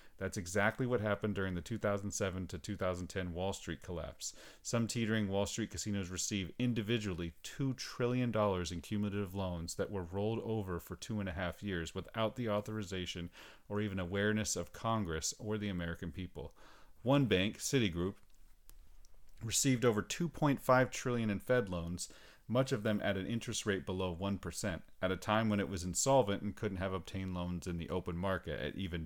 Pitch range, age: 90-110 Hz, 40-59